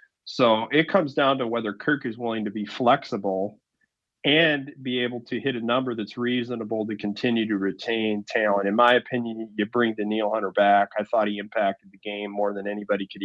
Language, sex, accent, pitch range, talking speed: English, male, American, 110-130 Hz, 205 wpm